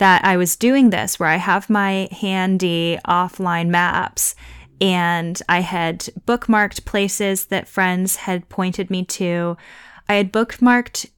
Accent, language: American, English